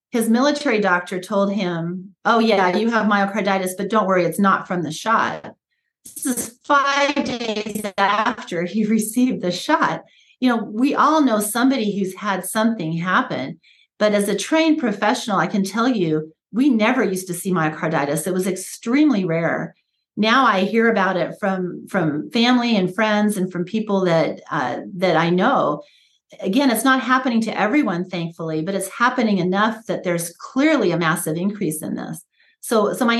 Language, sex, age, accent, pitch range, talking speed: English, female, 40-59, American, 180-235 Hz, 175 wpm